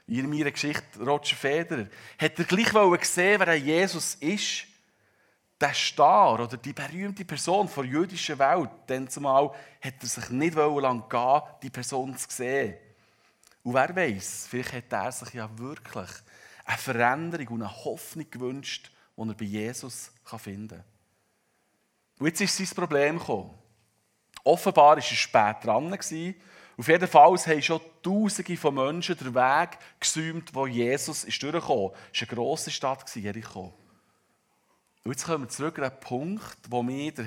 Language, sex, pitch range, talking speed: German, male, 120-160 Hz, 160 wpm